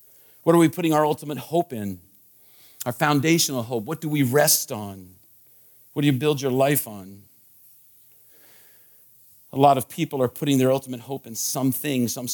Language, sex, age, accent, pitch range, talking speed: English, male, 50-69, American, 110-145 Hz, 170 wpm